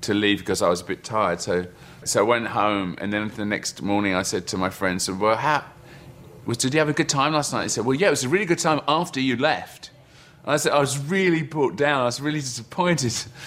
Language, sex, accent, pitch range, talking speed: German, male, British, 105-145 Hz, 265 wpm